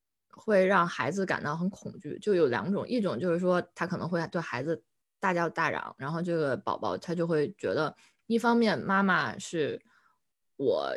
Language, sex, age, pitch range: Chinese, female, 20-39, 165-215 Hz